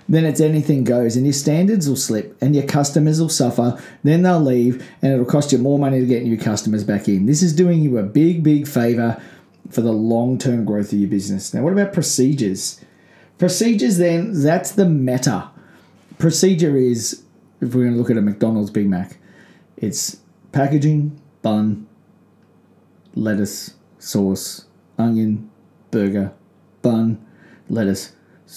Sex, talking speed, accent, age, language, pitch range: male, 155 wpm, Australian, 30-49, English, 120-165 Hz